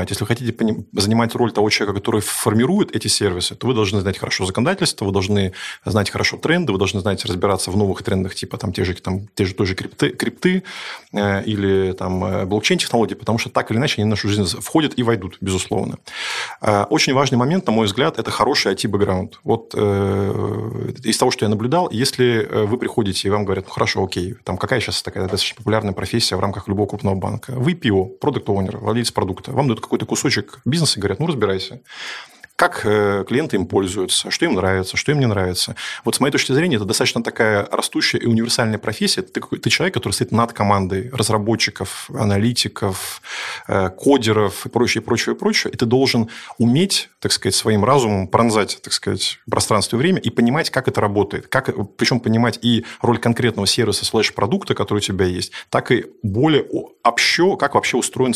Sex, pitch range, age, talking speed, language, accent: male, 100-120 Hz, 30-49, 185 wpm, Russian, native